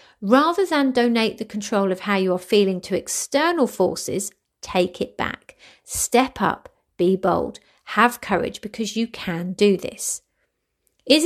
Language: English